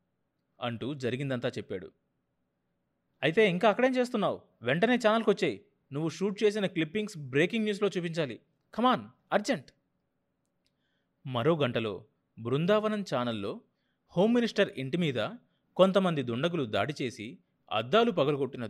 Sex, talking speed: male, 95 wpm